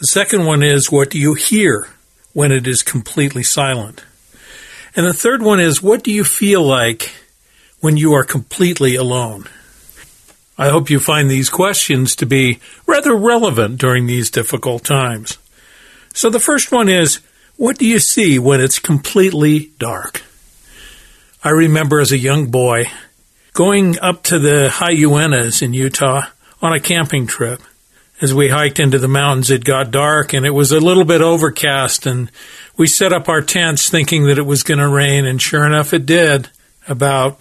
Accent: American